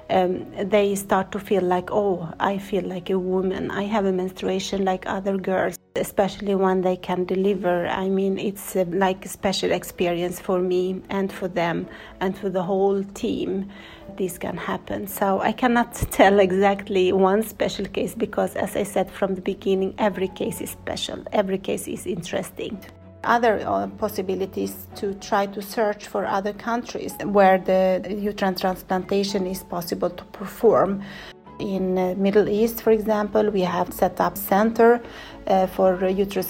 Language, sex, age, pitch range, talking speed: Romanian, female, 40-59, 185-205 Hz, 160 wpm